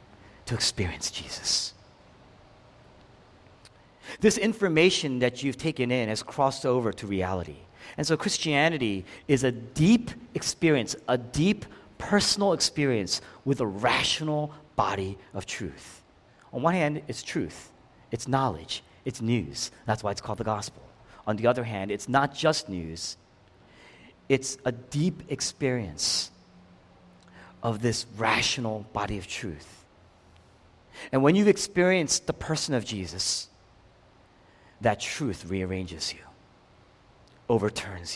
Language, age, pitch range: English, 40-59, 100-145 Hz